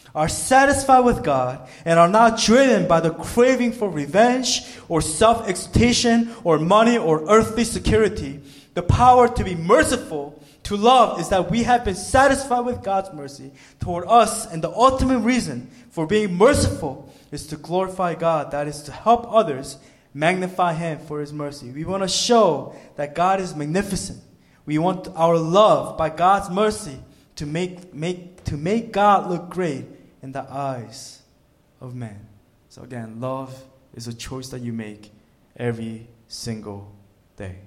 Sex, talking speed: male, 160 wpm